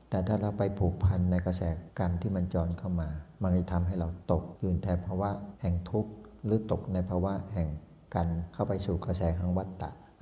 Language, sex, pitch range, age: Thai, male, 85-95 Hz, 60-79